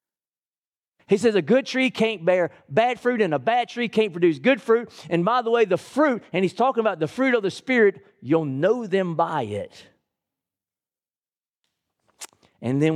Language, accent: English, American